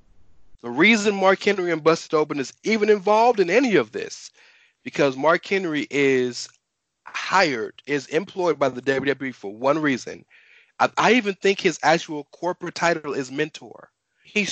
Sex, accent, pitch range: male, American, 135-175 Hz